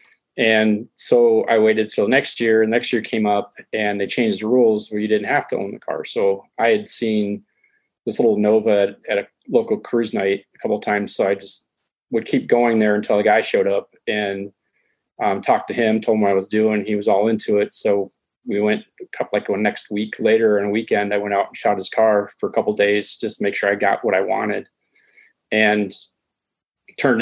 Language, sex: English, male